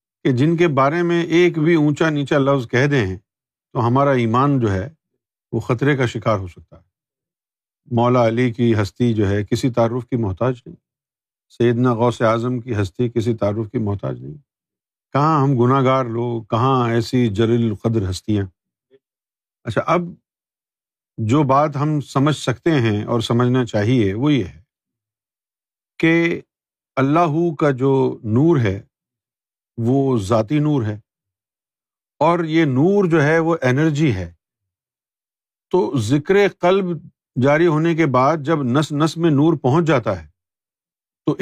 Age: 50-69